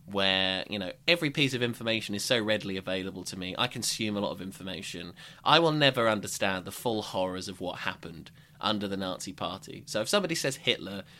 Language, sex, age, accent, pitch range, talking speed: English, male, 20-39, British, 100-155 Hz, 205 wpm